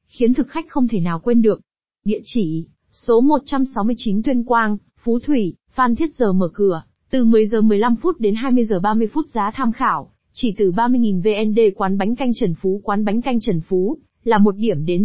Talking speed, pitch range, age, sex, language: 185 wpm, 200-245 Hz, 20-39, female, Vietnamese